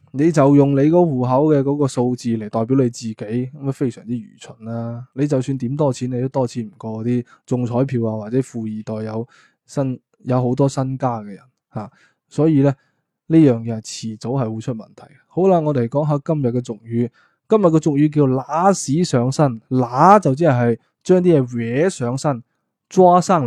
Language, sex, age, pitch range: Chinese, male, 20-39, 120-145 Hz